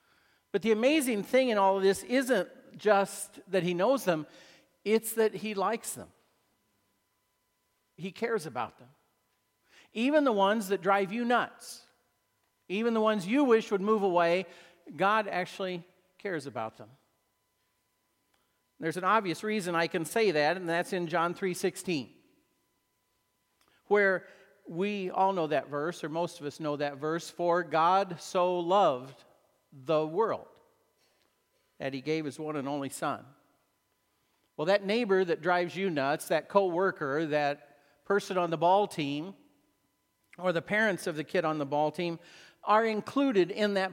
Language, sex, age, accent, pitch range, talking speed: English, male, 50-69, American, 155-205 Hz, 155 wpm